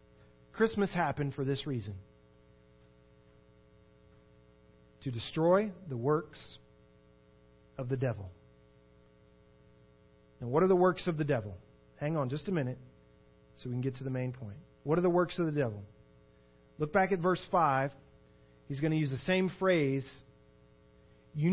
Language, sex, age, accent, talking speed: English, male, 40-59, American, 150 wpm